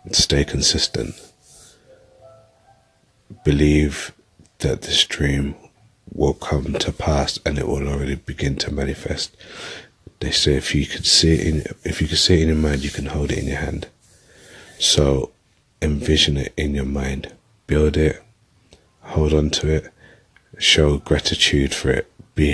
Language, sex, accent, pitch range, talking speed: English, male, British, 70-95 Hz, 150 wpm